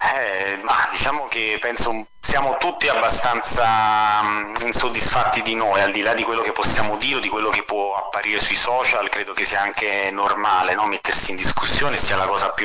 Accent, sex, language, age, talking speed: native, male, Italian, 30-49, 190 wpm